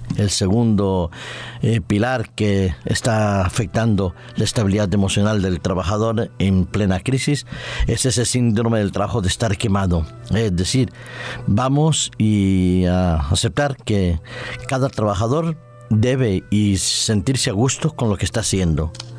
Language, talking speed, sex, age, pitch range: Spanish, 130 wpm, male, 50-69, 100-125 Hz